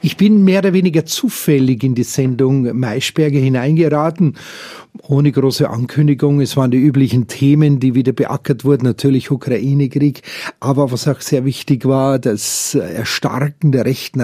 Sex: male